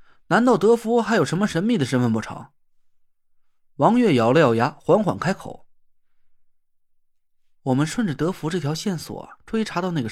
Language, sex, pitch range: Chinese, male, 145-220 Hz